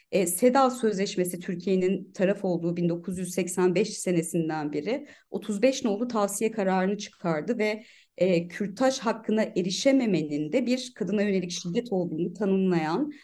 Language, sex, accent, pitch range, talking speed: Turkish, female, native, 175-235 Hz, 120 wpm